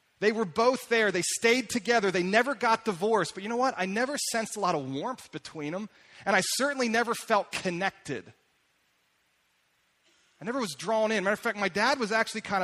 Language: English